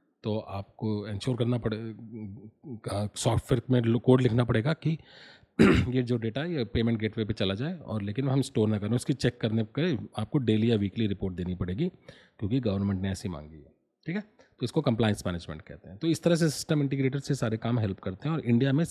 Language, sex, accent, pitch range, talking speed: Hindi, male, native, 100-125 Hz, 215 wpm